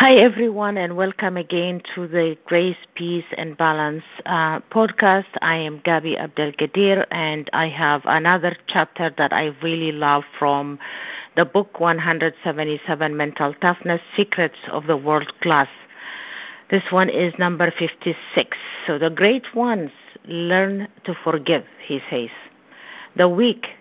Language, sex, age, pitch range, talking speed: English, female, 50-69, 155-185 Hz, 135 wpm